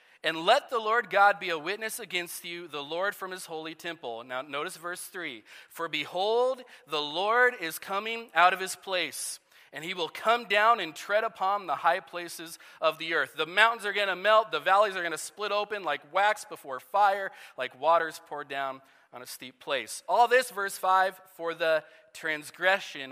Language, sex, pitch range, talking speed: English, male, 155-220 Hz, 195 wpm